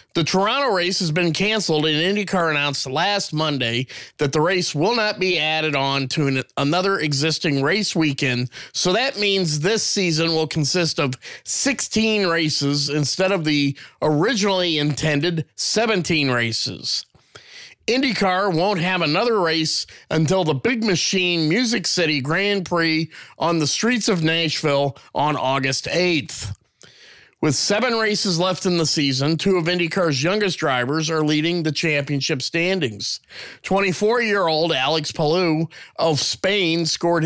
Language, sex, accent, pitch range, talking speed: English, male, American, 145-185 Hz, 135 wpm